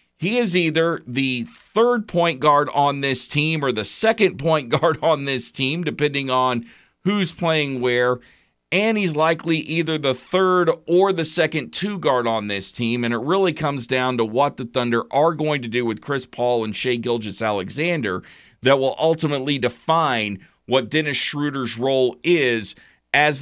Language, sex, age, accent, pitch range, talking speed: English, male, 40-59, American, 125-165 Hz, 170 wpm